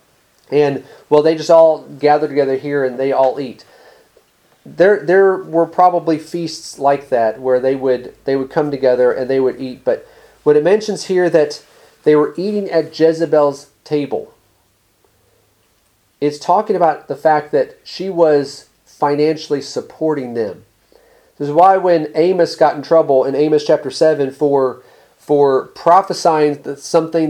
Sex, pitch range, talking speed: male, 140-170 Hz, 155 wpm